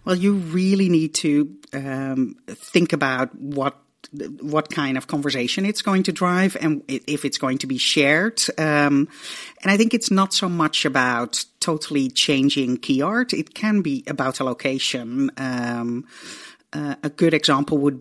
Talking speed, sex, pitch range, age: 165 wpm, female, 135-185 Hz, 40-59